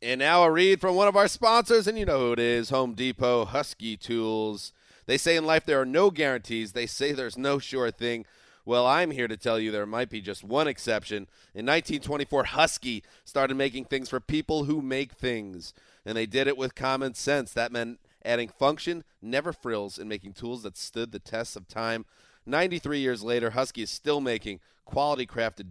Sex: male